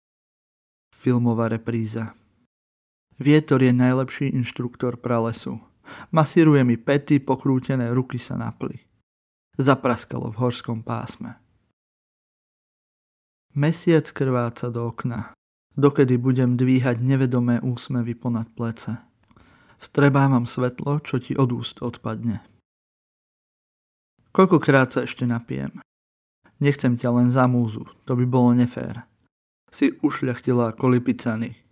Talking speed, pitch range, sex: 100 wpm, 115-135 Hz, male